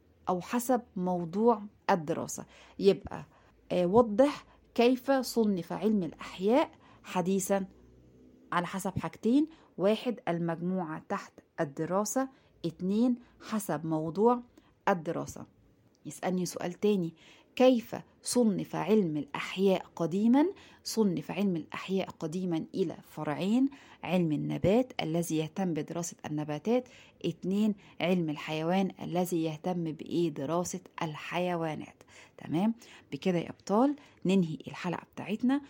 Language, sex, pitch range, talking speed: Arabic, female, 160-225 Hz, 95 wpm